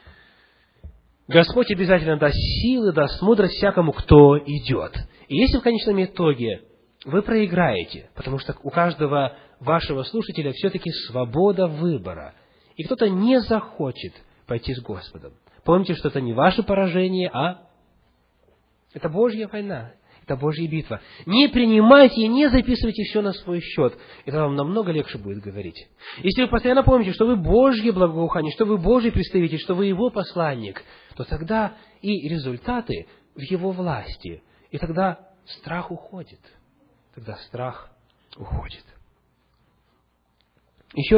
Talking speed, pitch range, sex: 135 wpm, 140-210 Hz, male